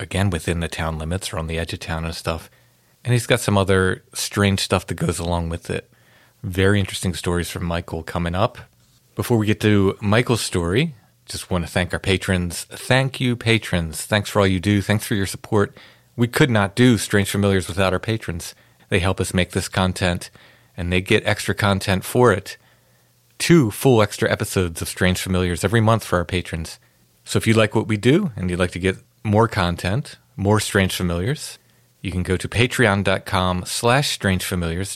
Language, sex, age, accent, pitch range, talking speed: English, male, 40-59, American, 90-115 Hz, 190 wpm